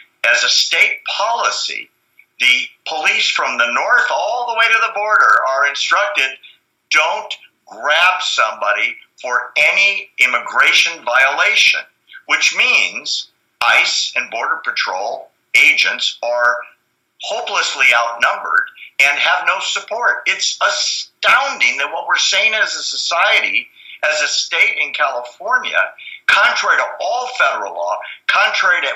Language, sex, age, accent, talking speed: English, male, 50-69, American, 120 wpm